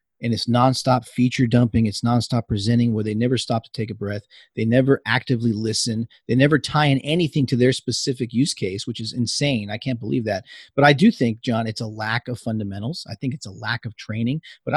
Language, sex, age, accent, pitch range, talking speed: English, male, 40-59, American, 115-135 Hz, 225 wpm